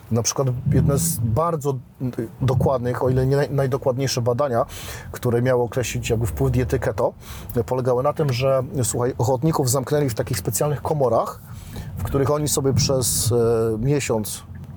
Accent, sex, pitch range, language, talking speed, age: native, male, 120-145 Hz, Polish, 140 wpm, 40-59